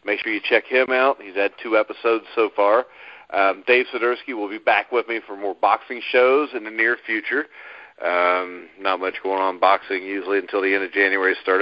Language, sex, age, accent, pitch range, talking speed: English, male, 40-59, American, 100-125 Hz, 210 wpm